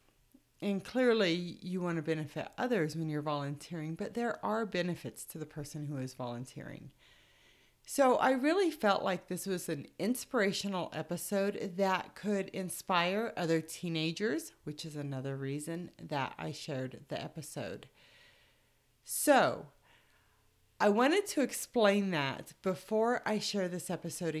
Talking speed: 135 wpm